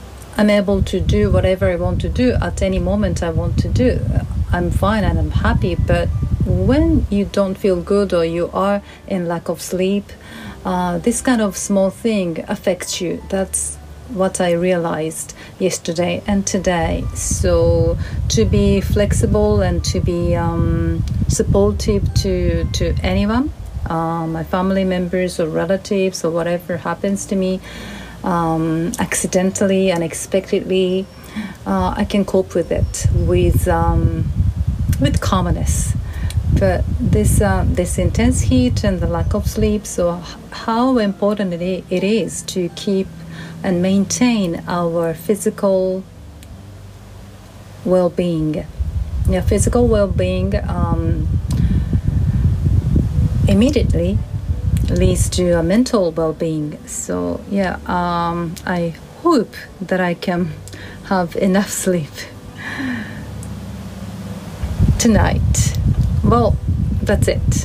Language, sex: Japanese, female